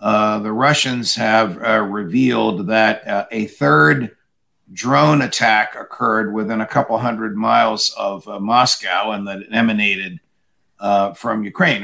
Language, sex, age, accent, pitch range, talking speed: English, male, 50-69, American, 110-140 Hz, 140 wpm